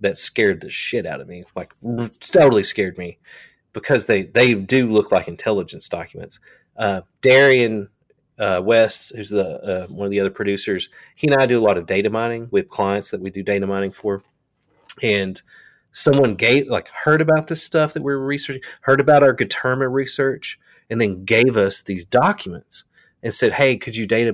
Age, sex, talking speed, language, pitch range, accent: 30-49, male, 190 wpm, English, 100-130 Hz, American